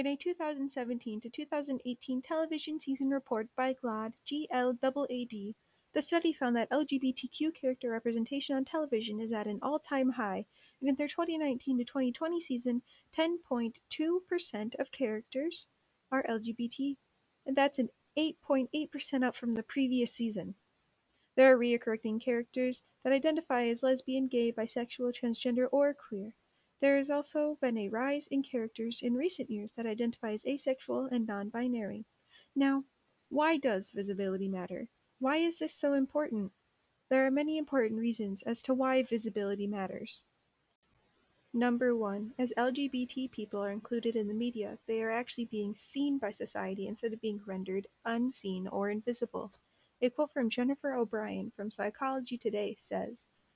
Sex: female